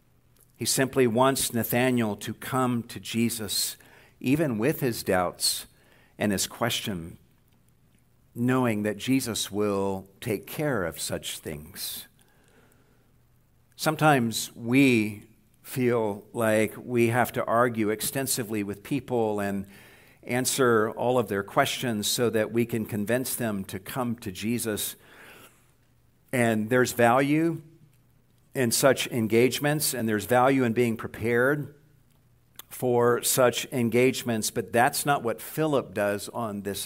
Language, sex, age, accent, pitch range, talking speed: English, male, 60-79, American, 105-130 Hz, 120 wpm